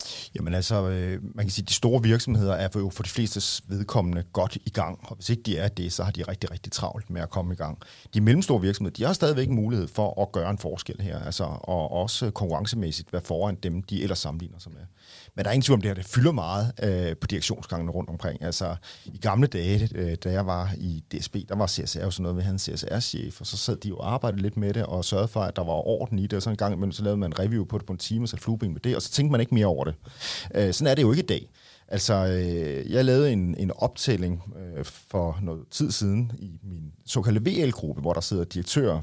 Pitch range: 90-115 Hz